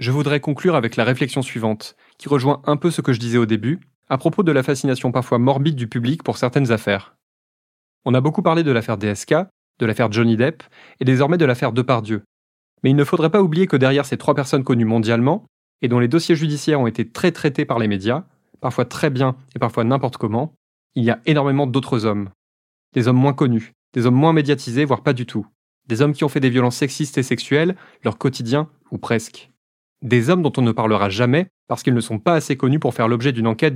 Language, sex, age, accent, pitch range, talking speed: French, male, 20-39, French, 115-145 Hz, 230 wpm